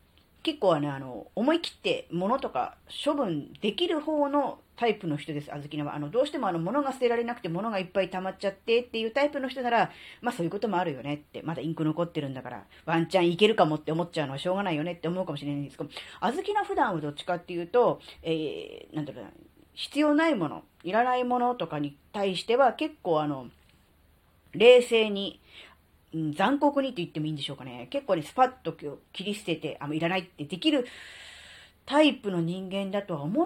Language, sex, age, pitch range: Japanese, female, 40-59, 145-225 Hz